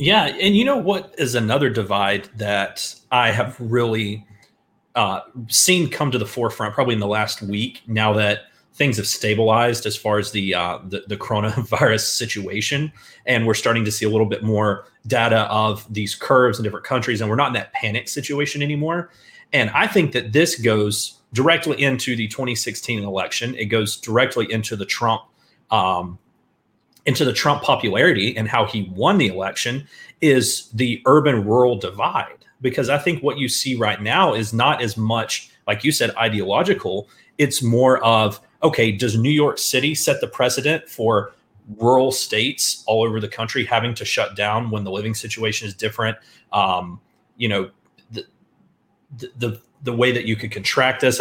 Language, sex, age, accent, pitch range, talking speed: English, male, 30-49, American, 105-130 Hz, 175 wpm